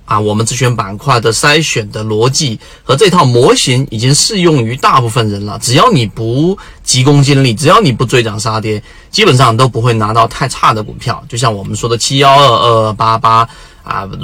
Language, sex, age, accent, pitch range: Chinese, male, 30-49, native, 115-145 Hz